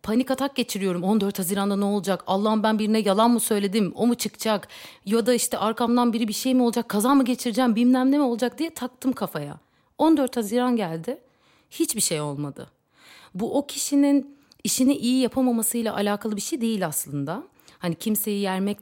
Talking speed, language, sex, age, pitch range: 170 wpm, Turkish, female, 40-59, 180-260 Hz